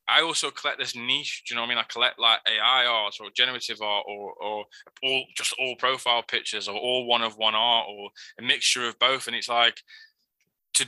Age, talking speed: 20-39, 225 wpm